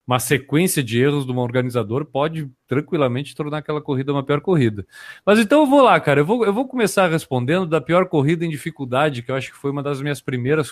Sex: male